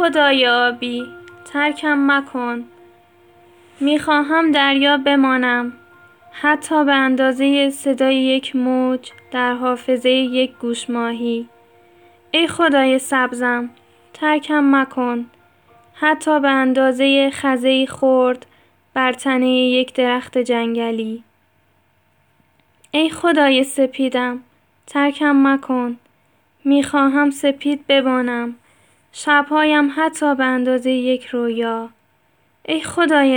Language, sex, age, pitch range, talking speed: Persian, female, 10-29, 245-285 Hz, 90 wpm